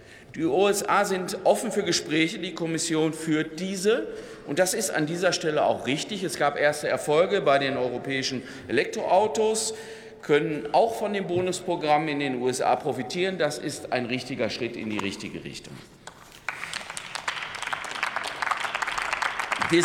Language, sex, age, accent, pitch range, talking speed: German, male, 50-69, German, 155-200 Hz, 135 wpm